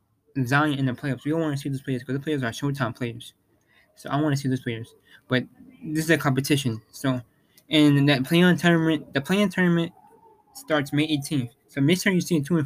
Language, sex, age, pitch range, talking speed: English, male, 20-39, 130-160 Hz, 230 wpm